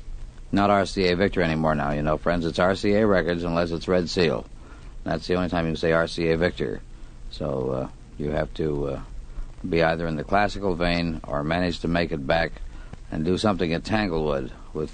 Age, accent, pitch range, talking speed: 60-79, American, 80-115 Hz, 190 wpm